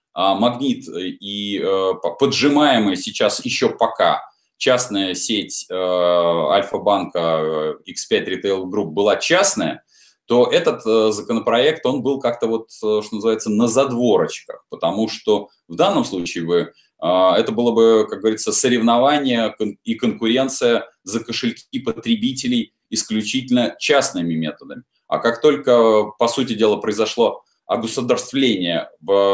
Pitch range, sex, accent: 95-145 Hz, male, native